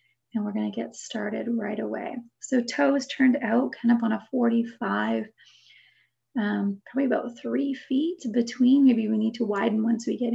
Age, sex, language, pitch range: 30-49, female, English, 220-260 Hz